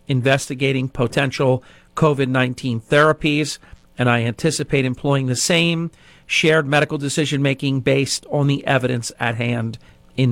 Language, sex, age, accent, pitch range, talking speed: English, male, 50-69, American, 115-150 Hz, 115 wpm